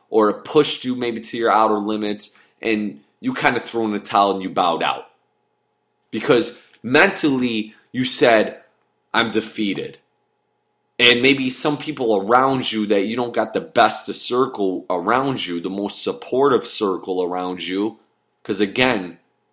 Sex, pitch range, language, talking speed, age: male, 105-145 Hz, English, 155 wpm, 20-39